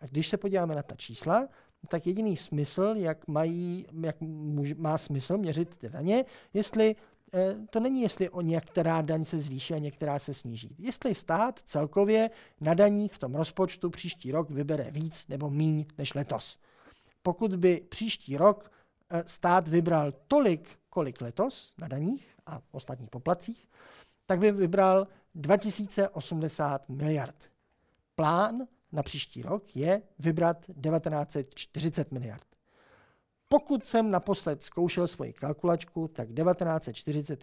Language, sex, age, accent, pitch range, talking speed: Czech, male, 50-69, native, 150-200 Hz, 135 wpm